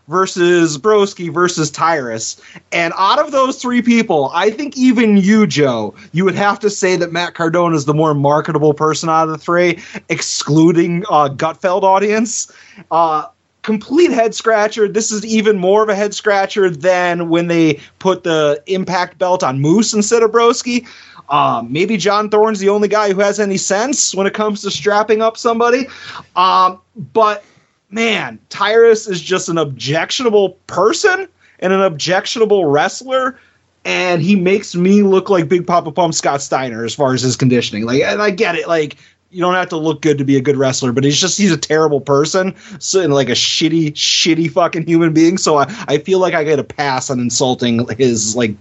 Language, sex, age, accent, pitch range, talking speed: English, male, 30-49, American, 155-210 Hz, 185 wpm